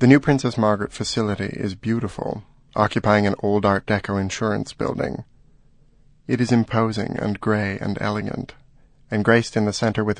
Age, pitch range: 30-49, 100-130 Hz